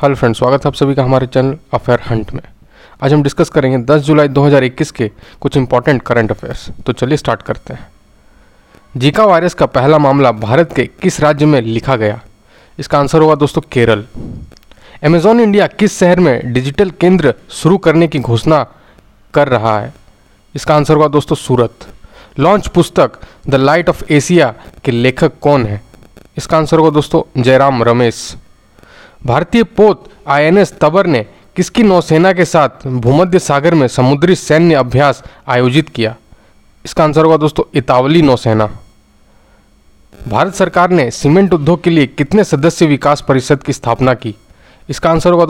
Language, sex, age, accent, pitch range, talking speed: Hindi, male, 40-59, native, 120-165 Hz, 160 wpm